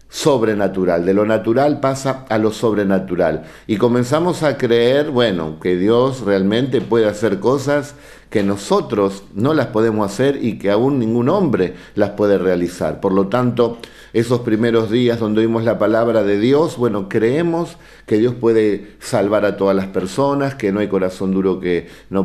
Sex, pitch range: male, 100-140 Hz